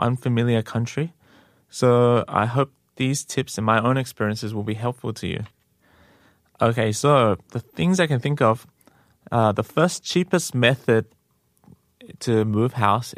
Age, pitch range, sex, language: 20-39, 105-120 Hz, male, Korean